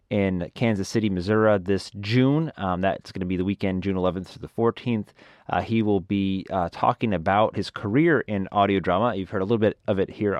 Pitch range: 90-115 Hz